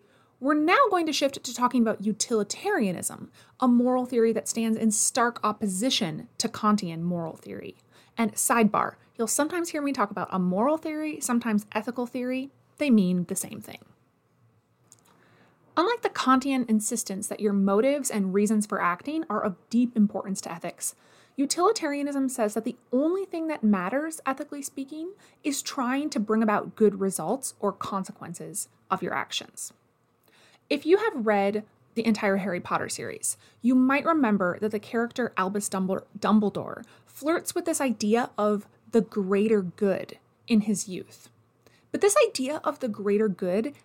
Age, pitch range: 20-39, 205-285 Hz